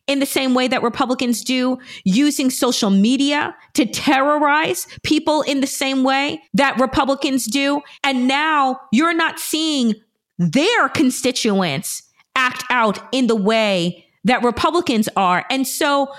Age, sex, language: 30-49, female, English